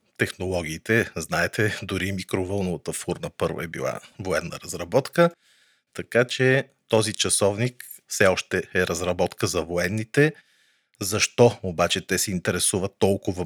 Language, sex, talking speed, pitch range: Bulgarian, male, 115 wpm, 95-115 Hz